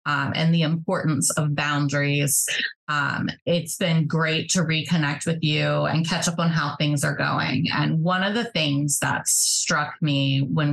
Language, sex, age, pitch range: English, female, 30-49, 145-200 Hz